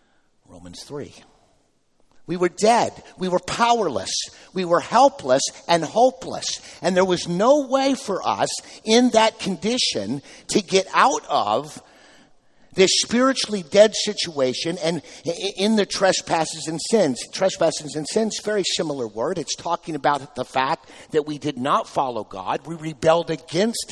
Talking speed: 145 wpm